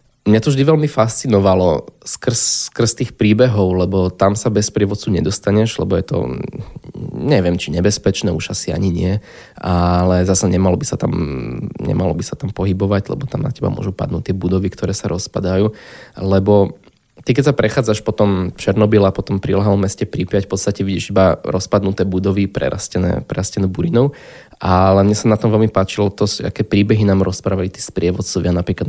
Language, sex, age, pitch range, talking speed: Slovak, male, 20-39, 95-105 Hz, 170 wpm